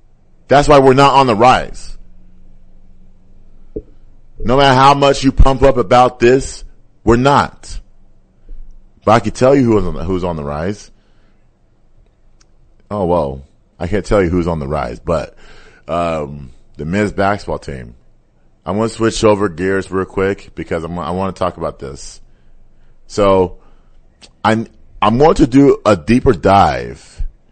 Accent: American